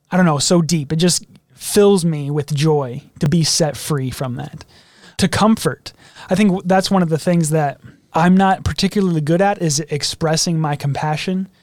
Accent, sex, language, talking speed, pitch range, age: American, male, English, 185 wpm, 150-185 Hz, 20-39